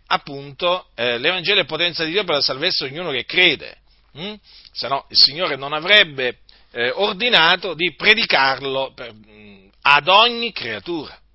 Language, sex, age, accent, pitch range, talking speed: Italian, male, 40-59, native, 130-205 Hz, 155 wpm